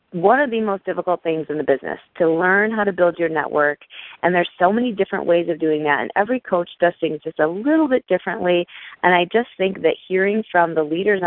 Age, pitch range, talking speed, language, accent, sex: 30-49, 165-195 Hz, 235 wpm, English, American, female